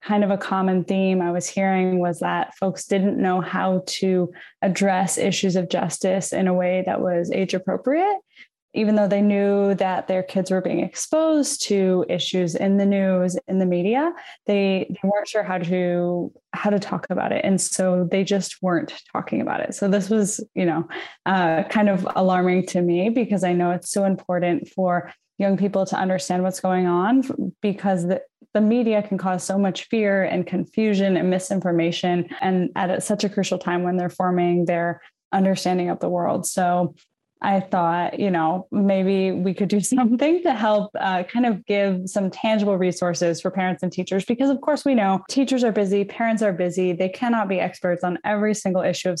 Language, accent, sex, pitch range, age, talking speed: English, American, female, 180-205 Hz, 10-29, 195 wpm